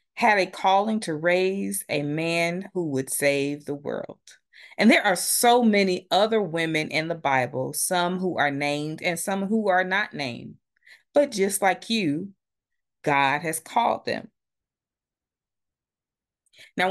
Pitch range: 140-180 Hz